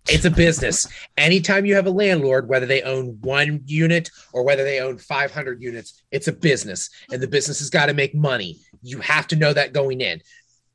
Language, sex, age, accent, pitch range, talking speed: English, male, 30-49, American, 120-150 Hz, 205 wpm